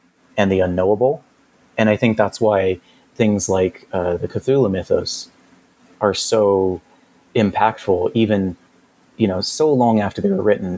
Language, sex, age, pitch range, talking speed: English, male, 30-49, 95-115 Hz, 145 wpm